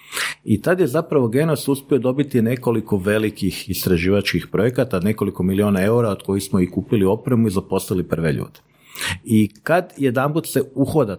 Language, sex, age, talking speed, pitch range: Croatian, male, 50-69, 160 wpm, 110-145 Hz